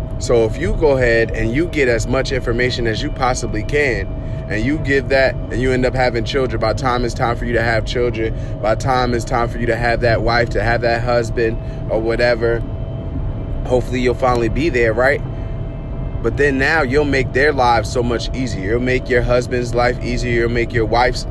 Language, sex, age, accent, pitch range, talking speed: English, male, 20-39, American, 115-130 Hz, 220 wpm